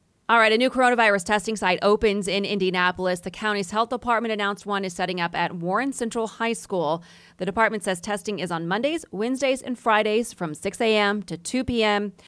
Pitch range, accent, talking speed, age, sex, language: 180-240 Hz, American, 195 wpm, 30-49, female, English